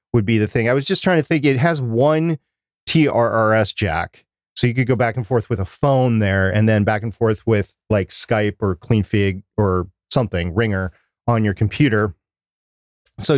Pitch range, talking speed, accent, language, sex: 100-130 Hz, 195 wpm, American, English, male